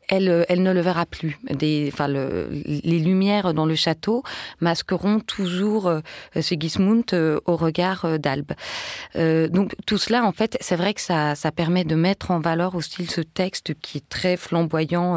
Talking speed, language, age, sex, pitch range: 185 wpm, French, 30-49, female, 165-205 Hz